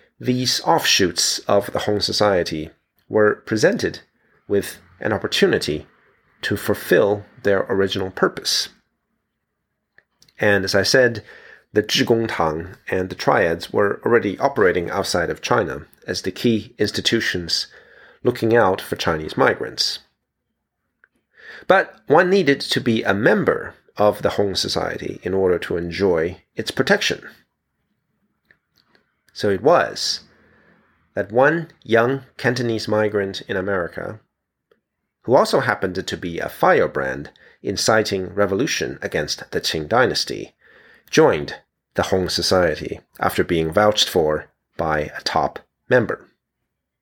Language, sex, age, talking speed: English, male, 30-49, 115 wpm